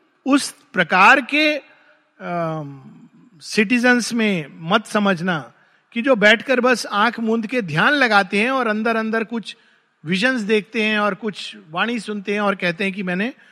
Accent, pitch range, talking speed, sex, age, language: native, 175-235 Hz, 155 wpm, male, 50-69, Hindi